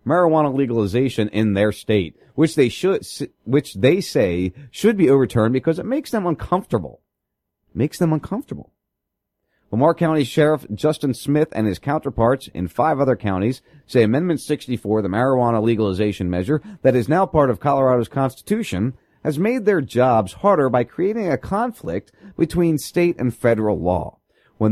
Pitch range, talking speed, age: 125-170 Hz, 155 wpm, 40-59